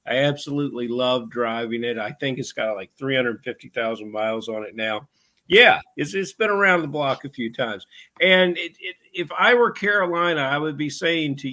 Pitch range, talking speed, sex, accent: 120-160 Hz, 195 wpm, male, American